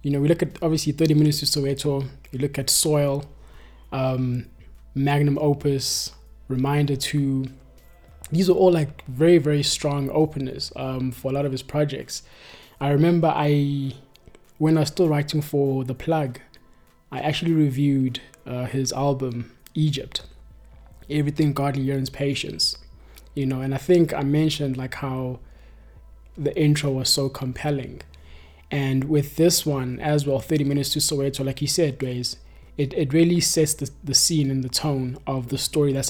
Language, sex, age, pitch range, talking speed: English, male, 20-39, 130-150 Hz, 160 wpm